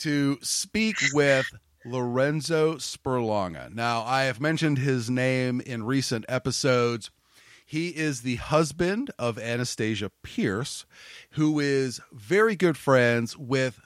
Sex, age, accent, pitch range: male, 40-59, American, 120-145 Hz